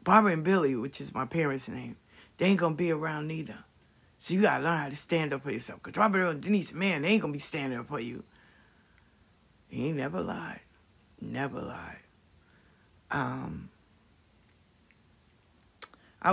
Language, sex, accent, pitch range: English, female, American, 110-165 Hz